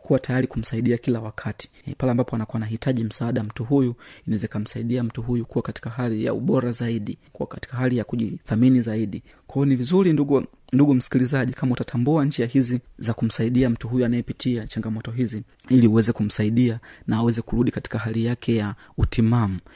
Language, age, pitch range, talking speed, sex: Swahili, 30-49, 115-130 Hz, 175 wpm, male